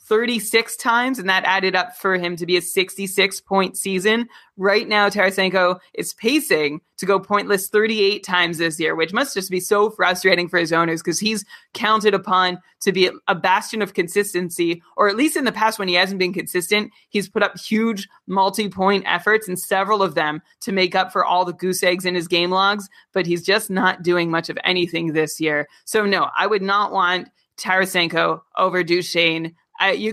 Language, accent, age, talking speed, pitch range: English, American, 20-39, 195 wpm, 175-205 Hz